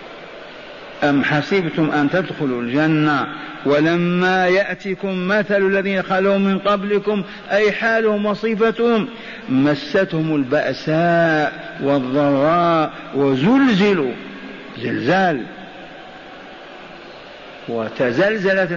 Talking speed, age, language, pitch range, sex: 65 wpm, 50-69, Arabic, 150-200 Hz, male